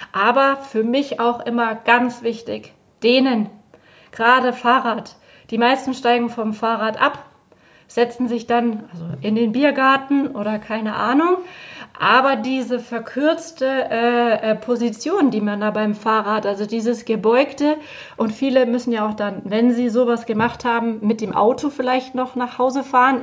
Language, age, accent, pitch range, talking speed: German, 30-49, German, 225-260 Hz, 145 wpm